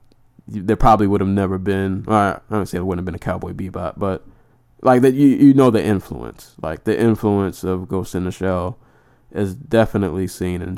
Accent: American